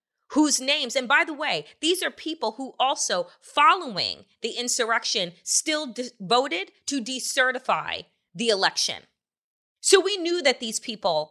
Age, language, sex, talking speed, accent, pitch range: 30-49, English, female, 140 wpm, American, 225-310 Hz